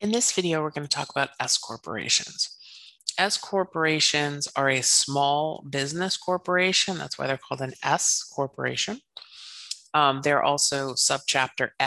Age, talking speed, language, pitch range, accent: 30-49, 140 wpm, English, 130-155 Hz, American